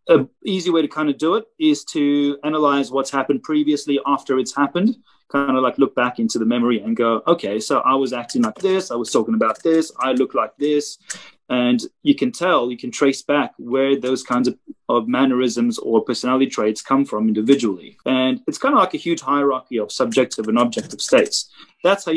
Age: 30-49